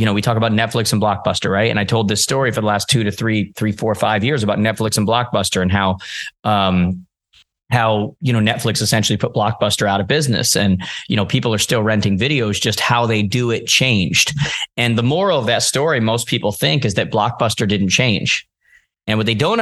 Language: English